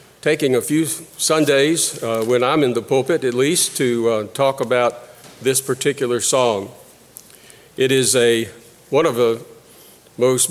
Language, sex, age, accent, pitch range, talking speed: English, male, 50-69, American, 125-160 Hz, 150 wpm